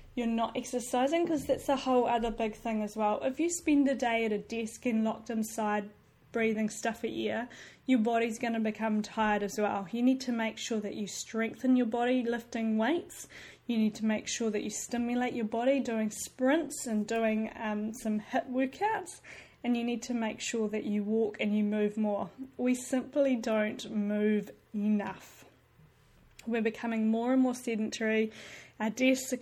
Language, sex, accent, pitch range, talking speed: English, female, Australian, 220-250 Hz, 185 wpm